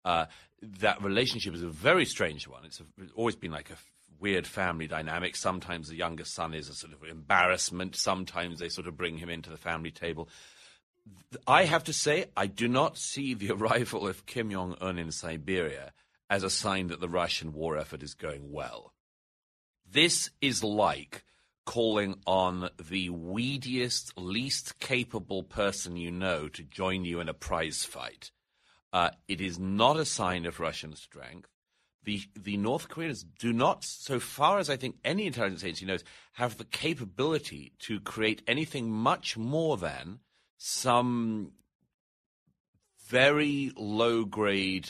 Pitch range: 85-120 Hz